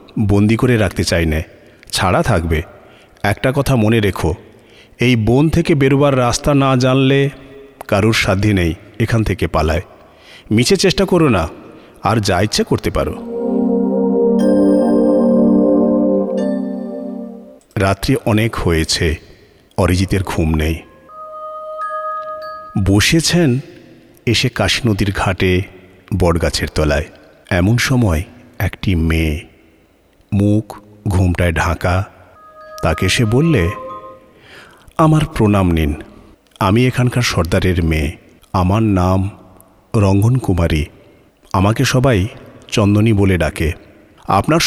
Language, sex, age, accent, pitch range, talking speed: Bengali, male, 50-69, native, 90-135 Hz, 80 wpm